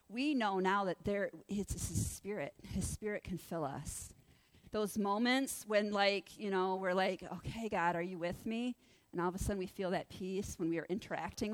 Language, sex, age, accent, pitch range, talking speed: English, female, 40-59, American, 175-210 Hz, 210 wpm